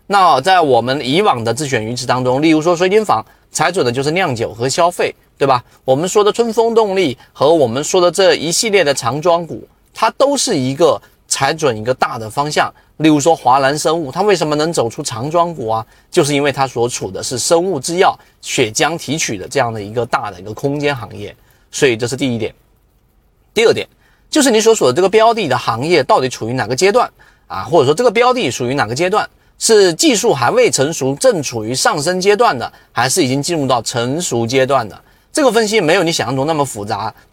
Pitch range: 125-190 Hz